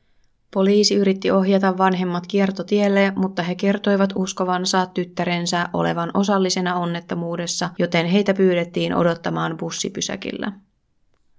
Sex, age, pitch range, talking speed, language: female, 20-39, 170-195 Hz, 95 wpm, Finnish